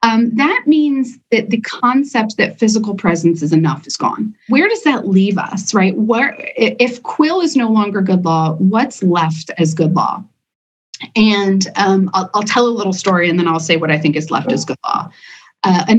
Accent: American